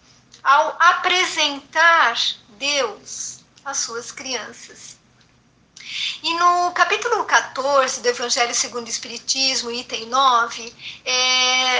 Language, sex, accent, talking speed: Portuguese, female, Brazilian, 85 wpm